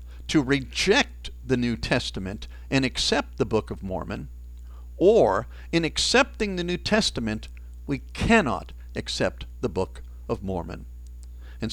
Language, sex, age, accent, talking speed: English, male, 50-69, American, 130 wpm